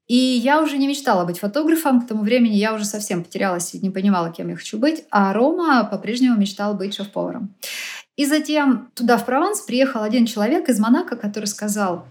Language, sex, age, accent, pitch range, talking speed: Russian, female, 30-49, native, 195-250 Hz, 195 wpm